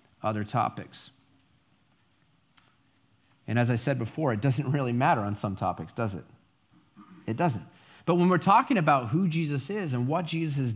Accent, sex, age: American, male, 30-49